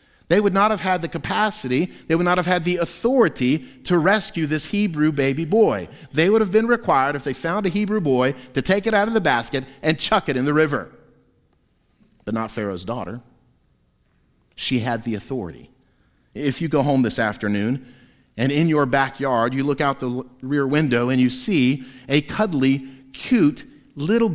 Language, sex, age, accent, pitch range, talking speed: English, male, 50-69, American, 135-210 Hz, 185 wpm